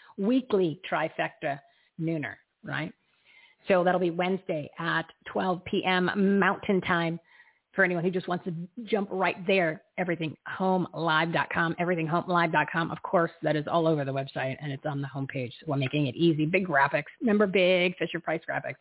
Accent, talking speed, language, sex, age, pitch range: American, 170 wpm, English, female, 40-59, 160-190 Hz